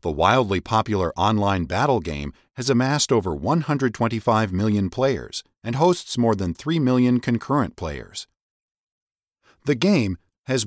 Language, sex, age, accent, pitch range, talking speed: English, male, 40-59, American, 95-140 Hz, 130 wpm